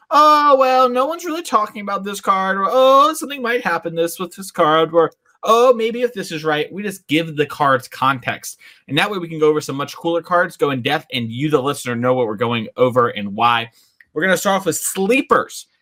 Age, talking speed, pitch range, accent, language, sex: 20-39, 240 wpm, 145-195 Hz, American, English, male